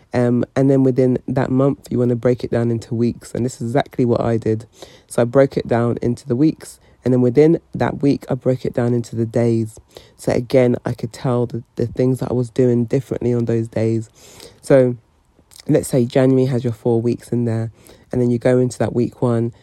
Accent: British